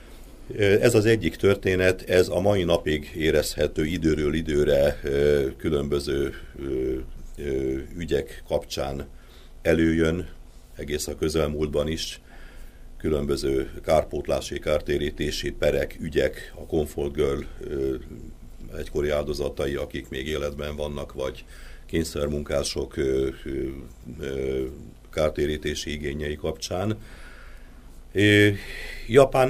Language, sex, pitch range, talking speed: Hungarian, male, 70-80 Hz, 80 wpm